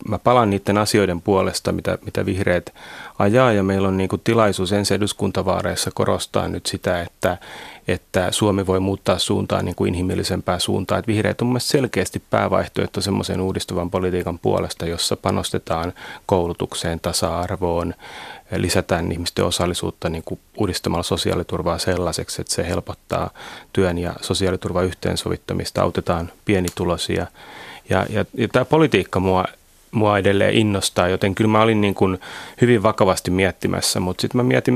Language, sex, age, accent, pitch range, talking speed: Finnish, male, 30-49, native, 90-110 Hz, 140 wpm